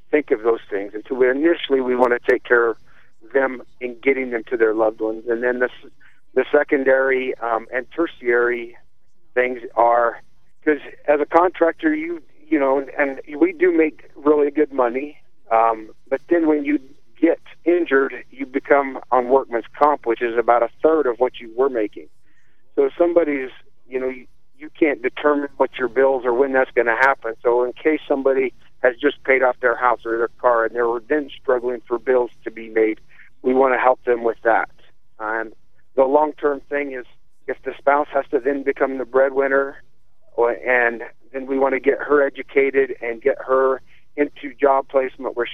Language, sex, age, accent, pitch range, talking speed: English, male, 50-69, American, 120-145 Hz, 190 wpm